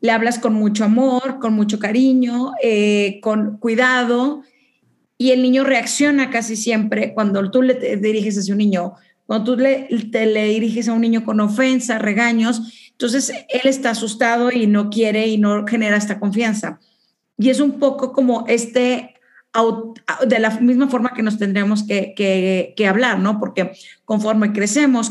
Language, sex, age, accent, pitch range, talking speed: Spanish, female, 40-59, Mexican, 210-255 Hz, 165 wpm